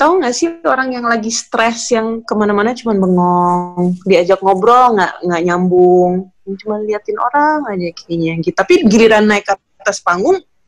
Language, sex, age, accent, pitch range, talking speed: Indonesian, female, 30-49, native, 185-240 Hz, 155 wpm